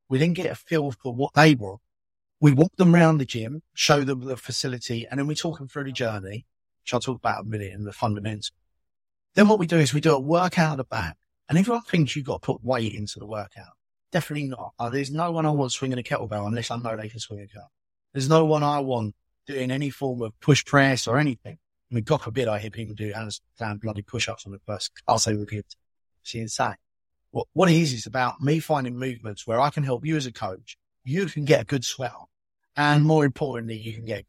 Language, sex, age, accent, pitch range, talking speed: English, male, 30-49, British, 105-145 Hz, 245 wpm